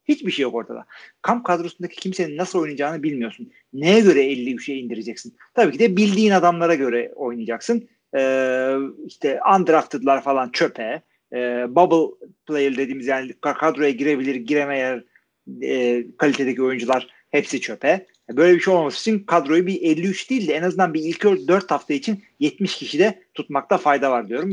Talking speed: 155 wpm